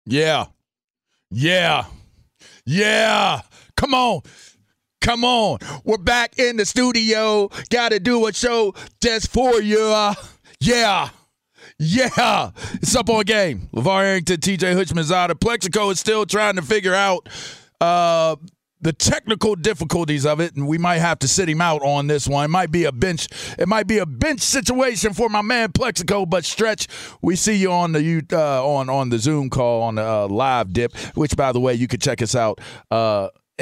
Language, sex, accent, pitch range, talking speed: English, male, American, 145-215 Hz, 175 wpm